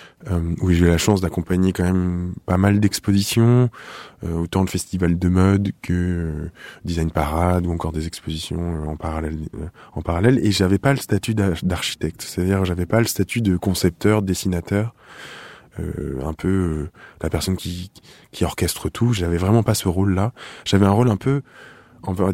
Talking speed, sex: 200 wpm, male